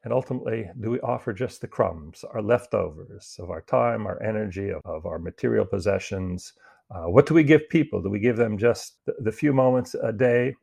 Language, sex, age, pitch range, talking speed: English, male, 40-59, 100-130 Hz, 205 wpm